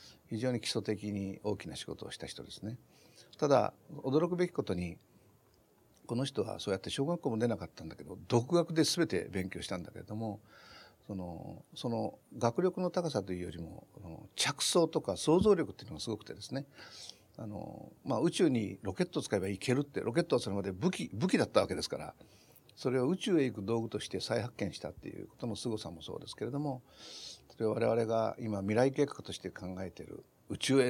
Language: Japanese